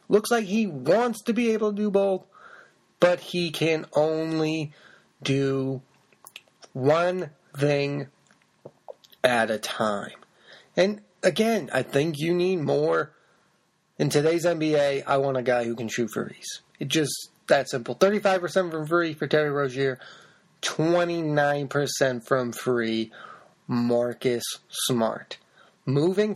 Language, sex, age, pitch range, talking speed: English, male, 30-49, 135-185 Hz, 125 wpm